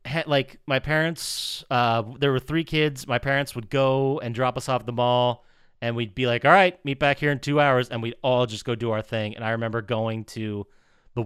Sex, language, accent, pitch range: male, English, American, 115-150 Hz